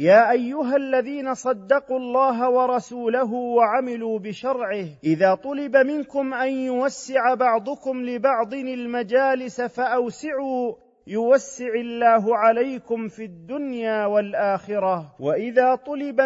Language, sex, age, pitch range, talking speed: Arabic, male, 40-59, 215-255 Hz, 90 wpm